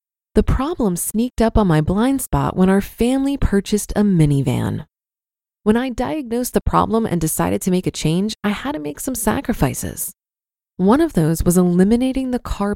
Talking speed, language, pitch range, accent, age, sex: 180 wpm, English, 170-235 Hz, American, 20-39, female